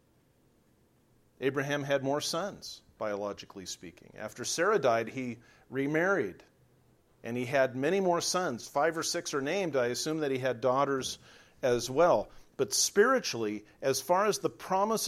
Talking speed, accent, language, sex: 145 wpm, American, English, male